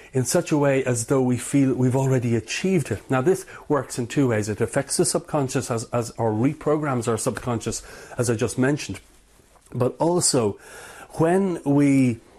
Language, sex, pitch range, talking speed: English, male, 115-145 Hz, 175 wpm